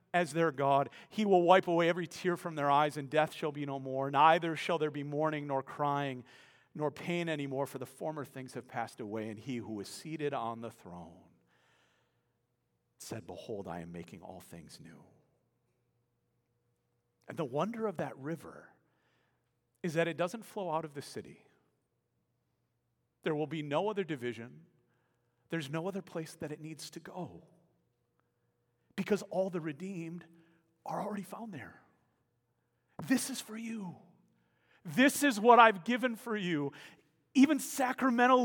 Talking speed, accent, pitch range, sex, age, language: 160 wpm, American, 135-195 Hz, male, 40-59, English